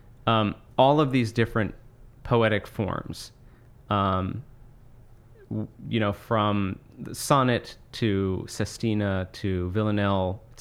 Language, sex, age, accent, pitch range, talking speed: English, male, 30-49, American, 110-125 Hz, 100 wpm